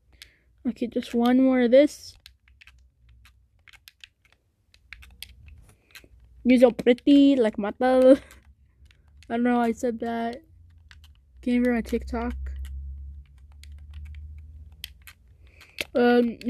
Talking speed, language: 80 wpm, English